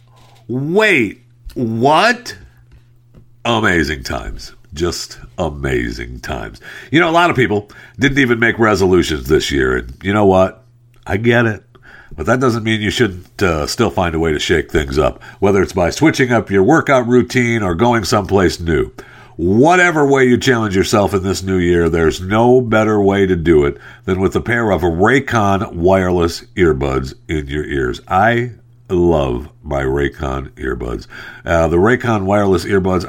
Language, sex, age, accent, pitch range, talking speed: English, male, 50-69, American, 85-120 Hz, 165 wpm